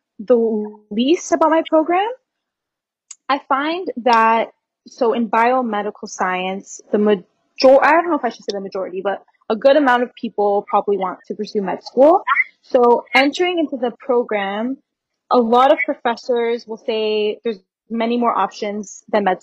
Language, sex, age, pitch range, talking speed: English, female, 20-39, 210-260 Hz, 160 wpm